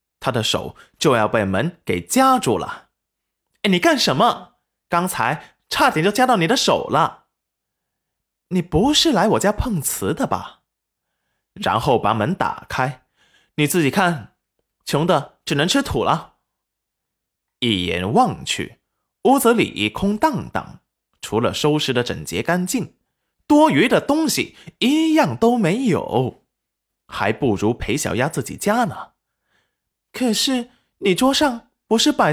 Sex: male